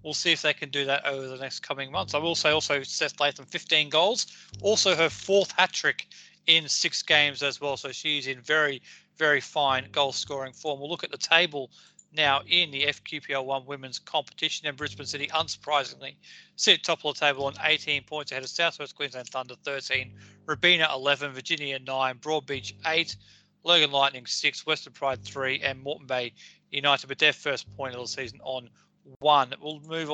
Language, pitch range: English, 135-165 Hz